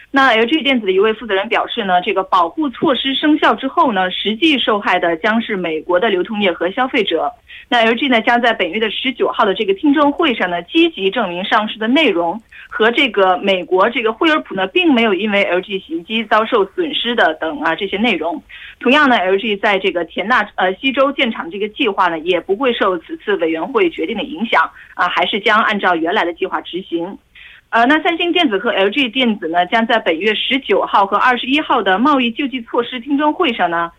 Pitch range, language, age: 185-280 Hz, Korean, 30-49